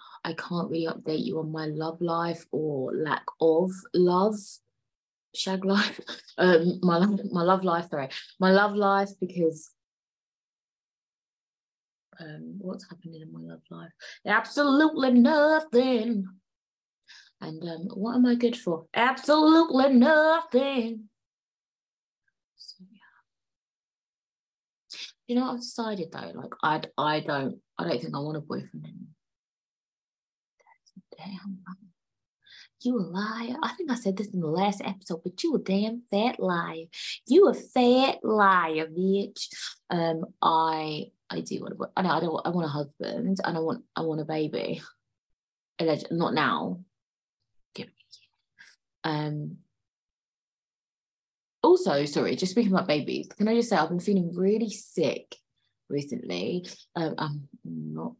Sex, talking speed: female, 135 wpm